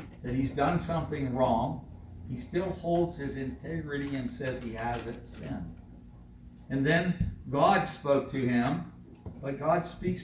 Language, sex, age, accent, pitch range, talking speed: English, male, 60-79, American, 110-155 Hz, 145 wpm